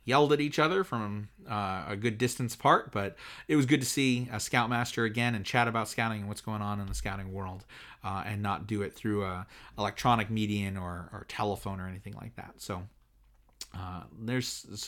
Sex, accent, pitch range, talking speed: male, American, 105-130 Hz, 200 wpm